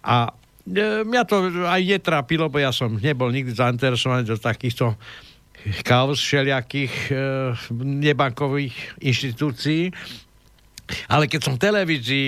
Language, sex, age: Slovak, male, 60-79